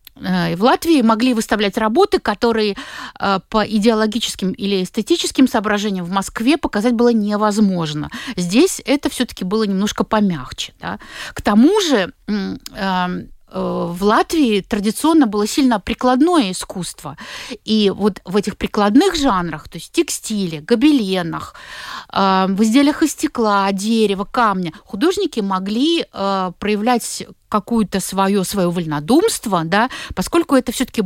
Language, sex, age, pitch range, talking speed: Russian, female, 50-69, 195-250 Hz, 120 wpm